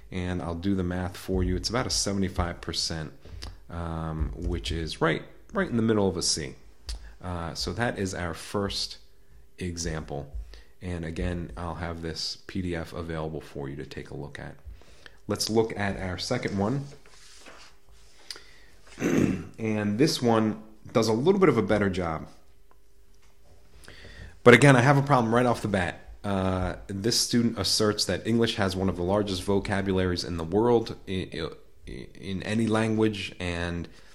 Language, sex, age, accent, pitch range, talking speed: English, male, 30-49, American, 80-105 Hz, 160 wpm